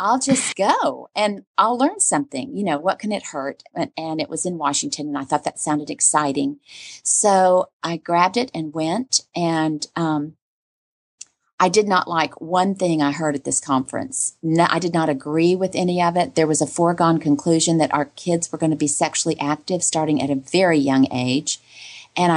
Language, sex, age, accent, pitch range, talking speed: English, female, 40-59, American, 145-175 Hz, 200 wpm